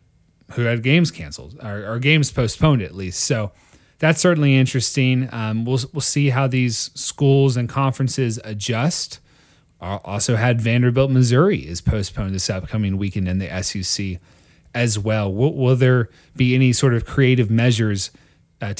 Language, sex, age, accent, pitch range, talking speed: English, male, 30-49, American, 105-135 Hz, 155 wpm